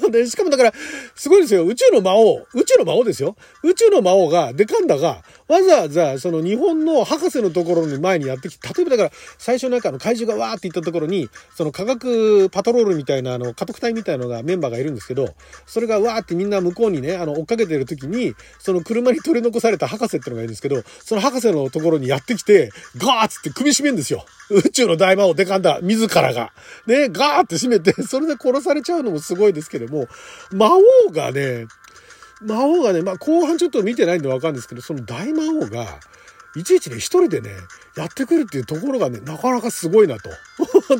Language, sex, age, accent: Japanese, male, 40-59, native